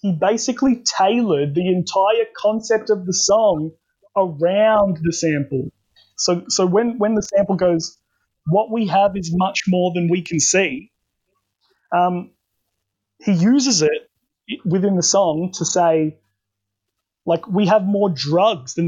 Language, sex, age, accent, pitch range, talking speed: English, male, 20-39, Australian, 170-230 Hz, 140 wpm